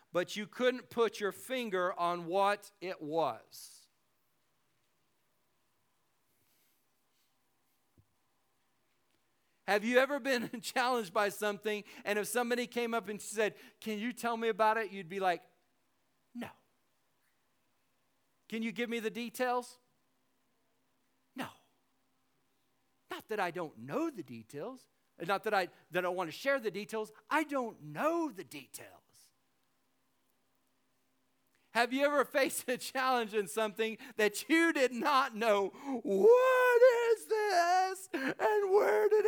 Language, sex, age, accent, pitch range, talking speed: English, male, 50-69, American, 205-275 Hz, 125 wpm